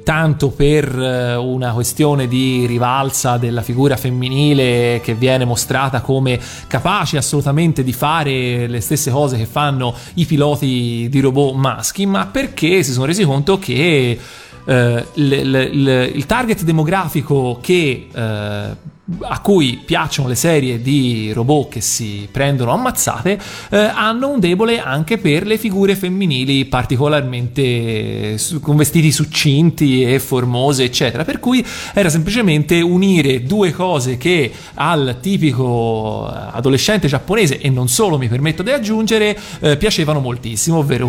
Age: 30-49